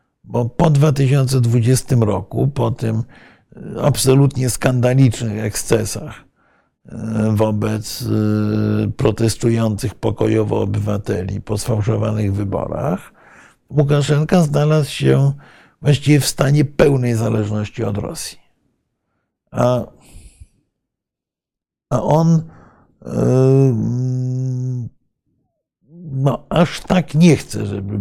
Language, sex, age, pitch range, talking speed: Polish, male, 60-79, 110-135 Hz, 85 wpm